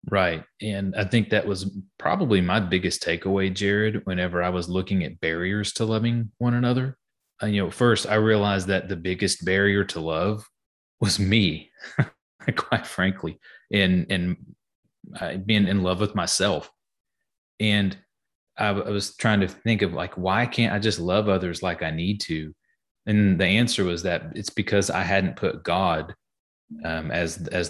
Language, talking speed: English, 165 wpm